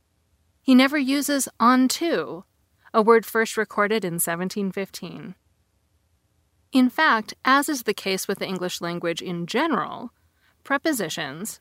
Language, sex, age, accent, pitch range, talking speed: English, female, 30-49, American, 165-230 Hz, 120 wpm